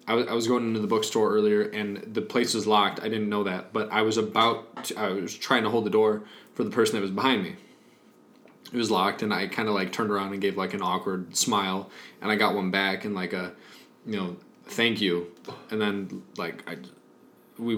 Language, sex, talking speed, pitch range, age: English, male, 230 wpm, 100-125 Hz, 20-39